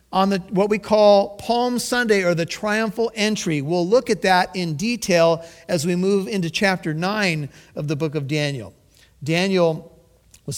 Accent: American